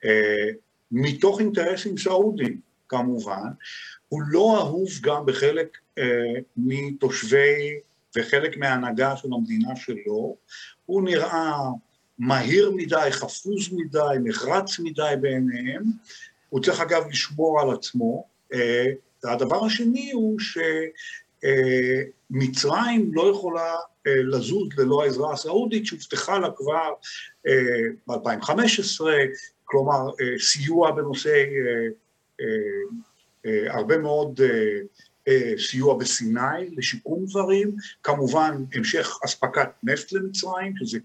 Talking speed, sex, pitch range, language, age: 95 wpm, male, 135-215 Hz, Hebrew, 50-69